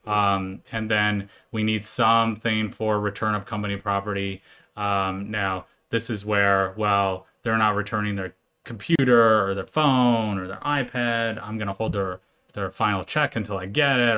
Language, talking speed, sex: English, 170 wpm, male